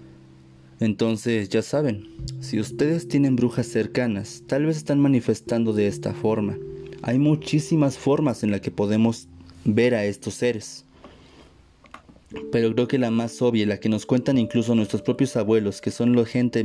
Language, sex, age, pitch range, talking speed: Spanish, male, 30-49, 105-140 Hz, 160 wpm